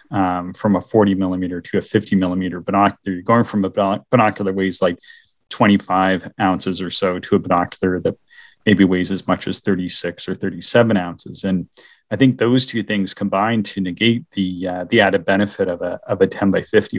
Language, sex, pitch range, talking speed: English, male, 95-115 Hz, 195 wpm